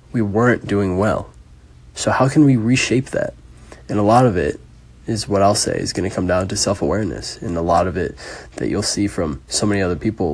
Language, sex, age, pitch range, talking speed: English, male, 20-39, 85-105 Hz, 225 wpm